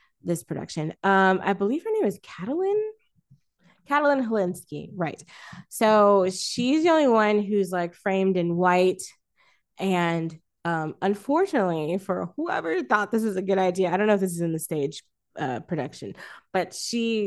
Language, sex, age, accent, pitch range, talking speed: English, female, 20-39, American, 165-220 Hz, 160 wpm